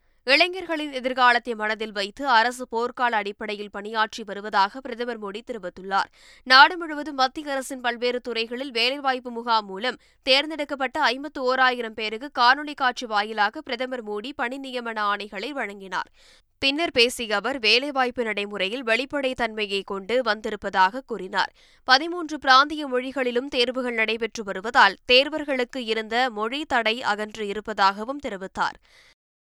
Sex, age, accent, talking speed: female, 20-39, native, 110 wpm